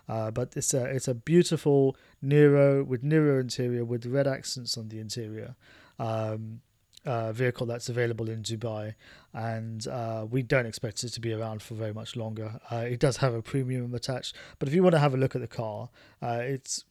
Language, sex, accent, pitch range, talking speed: English, male, British, 110-135 Hz, 200 wpm